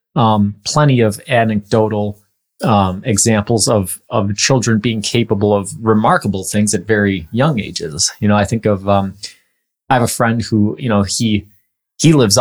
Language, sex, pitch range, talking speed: English, male, 100-120 Hz, 165 wpm